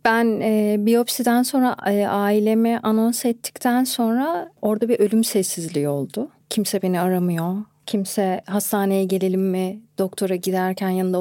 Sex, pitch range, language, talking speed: female, 185-230 Hz, Turkish, 120 wpm